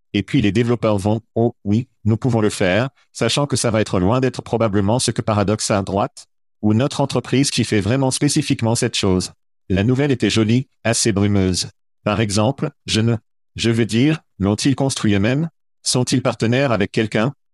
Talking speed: 180 wpm